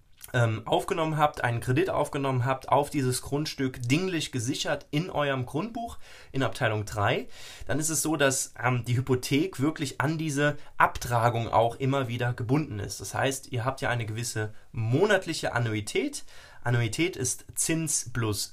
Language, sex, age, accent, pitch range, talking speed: German, male, 20-39, German, 115-145 Hz, 150 wpm